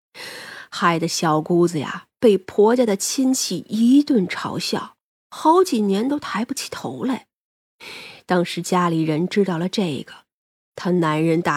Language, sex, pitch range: Chinese, female, 170-250 Hz